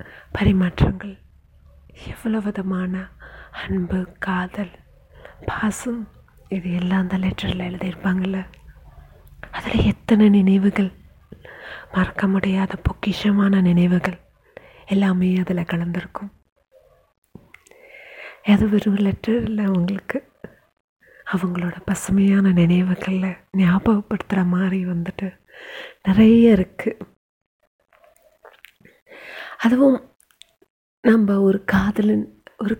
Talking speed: 70 wpm